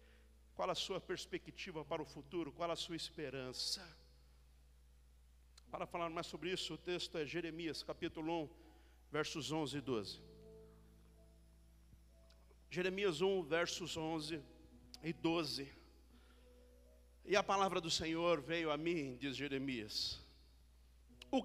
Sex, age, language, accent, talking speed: male, 50-69, Portuguese, Brazilian, 120 wpm